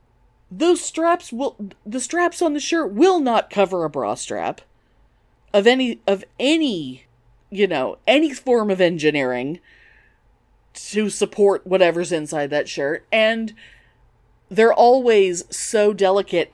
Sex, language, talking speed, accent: female, English, 125 wpm, American